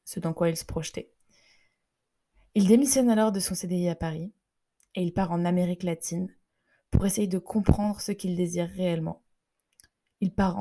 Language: French